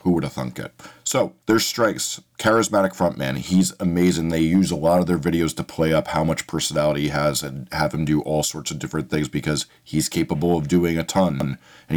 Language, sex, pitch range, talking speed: English, male, 80-95 Hz, 220 wpm